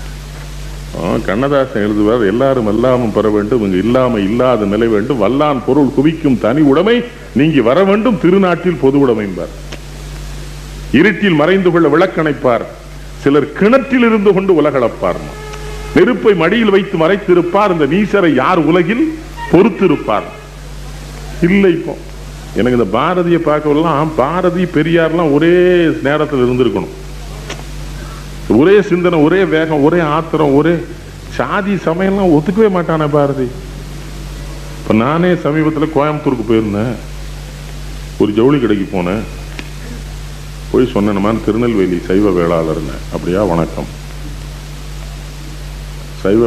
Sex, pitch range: male, 110-165 Hz